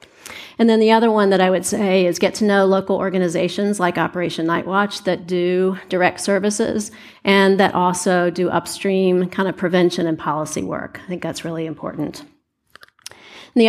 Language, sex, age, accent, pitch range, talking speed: English, female, 40-59, American, 175-195 Hz, 170 wpm